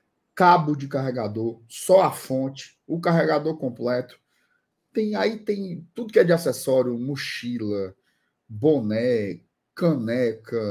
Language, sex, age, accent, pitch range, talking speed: Portuguese, male, 20-39, Brazilian, 125-180 Hz, 110 wpm